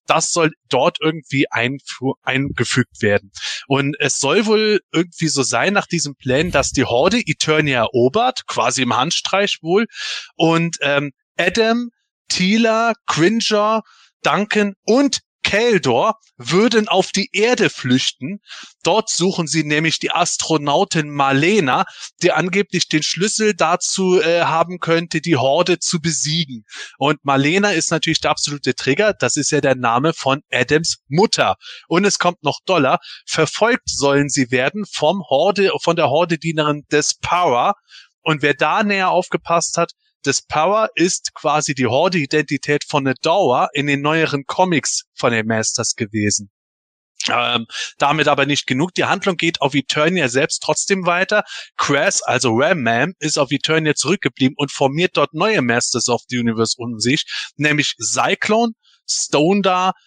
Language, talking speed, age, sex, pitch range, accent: German, 145 wpm, 20-39, male, 140-185 Hz, German